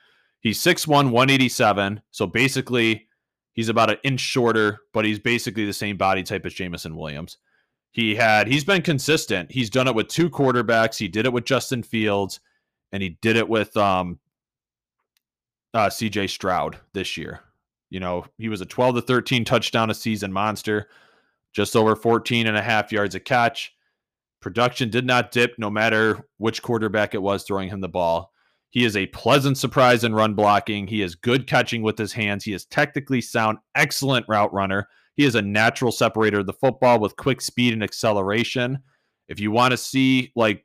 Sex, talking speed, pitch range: male, 185 wpm, 105-125 Hz